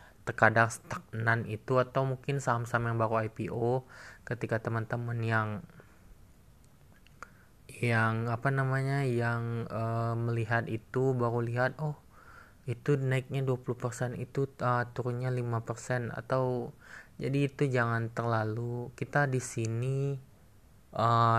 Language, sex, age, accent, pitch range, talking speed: Indonesian, male, 20-39, native, 110-130 Hz, 105 wpm